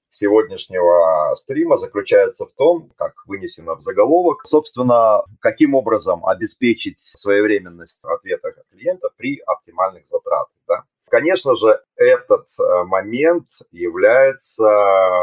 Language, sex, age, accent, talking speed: Russian, male, 30-49, native, 105 wpm